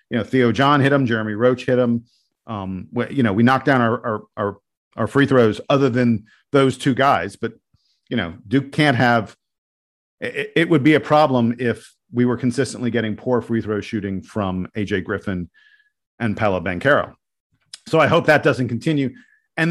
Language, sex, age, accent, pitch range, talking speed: English, male, 40-59, American, 115-145 Hz, 185 wpm